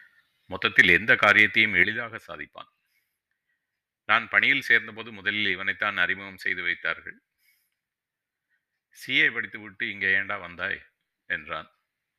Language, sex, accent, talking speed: Tamil, male, native, 100 wpm